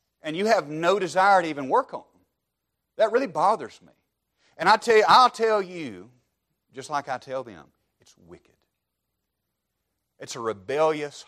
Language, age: English, 40-59